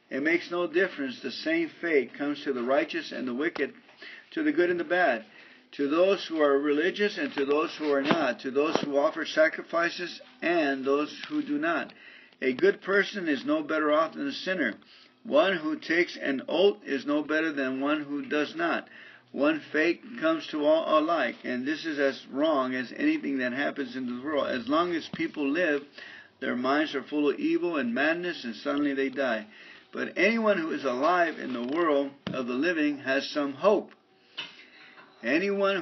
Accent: American